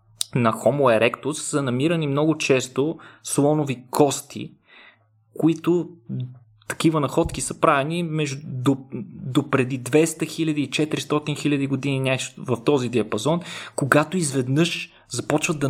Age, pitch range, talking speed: 20-39, 120-155 Hz, 120 wpm